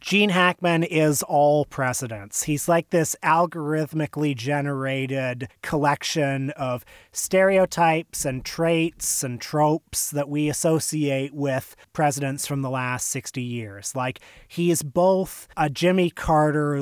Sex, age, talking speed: male, 30-49, 120 wpm